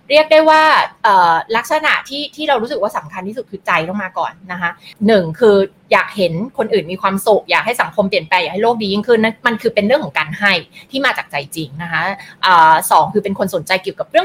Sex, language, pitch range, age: female, Thai, 185-260 Hz, 20-39